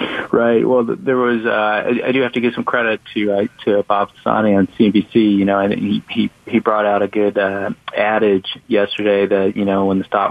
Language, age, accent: English, 30-49, American